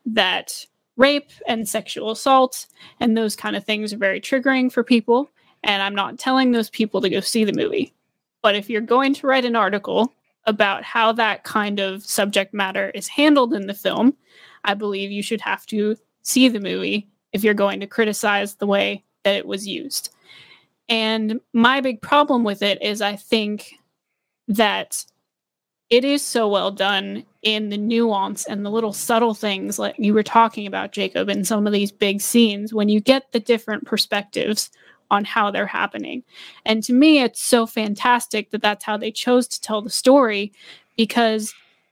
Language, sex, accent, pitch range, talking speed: English, female, American, 205-240 Hz, 180 wpm